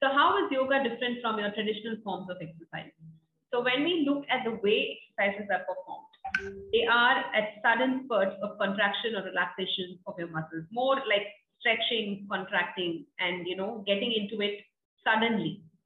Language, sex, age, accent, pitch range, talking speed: English, female, 30-49, Indian, 190-250 Hz, 165 wpm